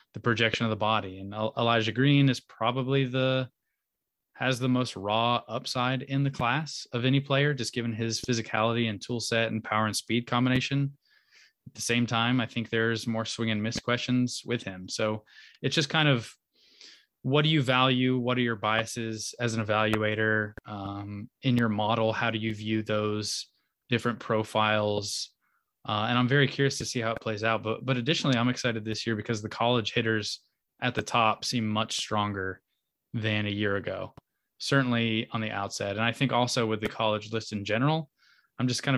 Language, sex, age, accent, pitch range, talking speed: English, male, 20-39, American, 110-125 Hz, 190 wpm